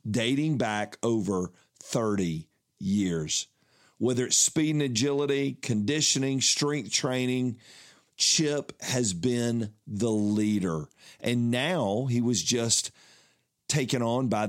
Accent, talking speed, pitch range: American, 110 wpm, 105-130 Hz